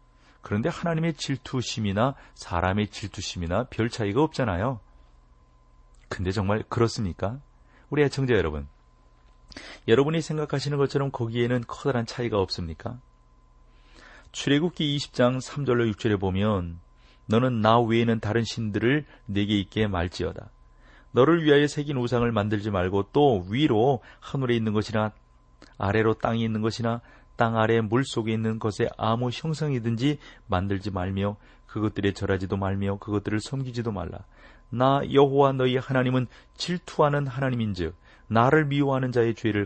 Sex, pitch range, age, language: male, 100-135 Hz, 40-59, Korean